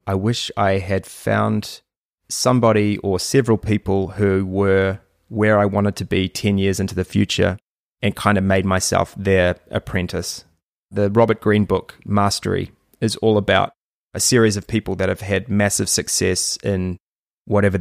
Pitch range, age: 95-110 Hz, 20-39